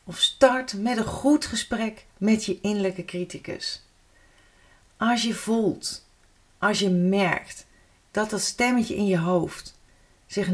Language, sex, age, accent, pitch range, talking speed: Dutch, female, 40-59, Dutch, 185-225 Hz, 130 wpm